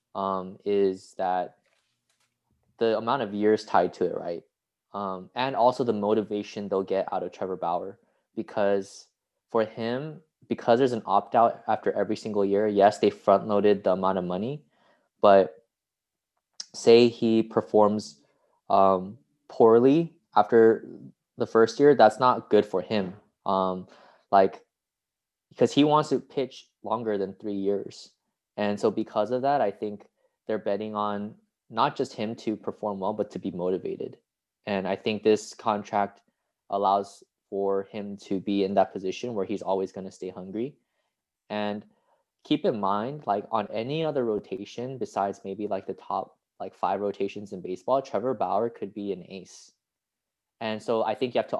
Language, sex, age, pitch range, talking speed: English, male, 20-39, 100-115 Hz, 160 wpm